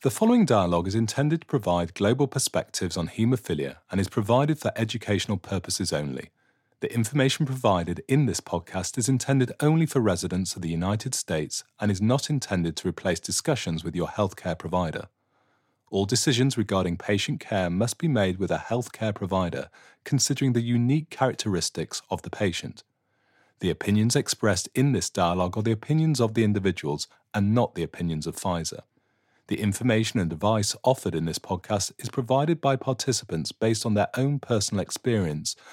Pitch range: 90-125 Hz